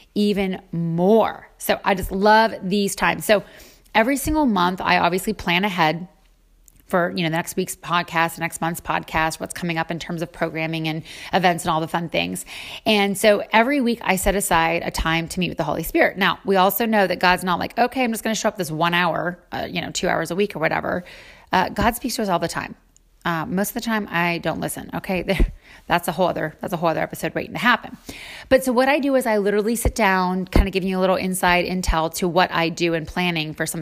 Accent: American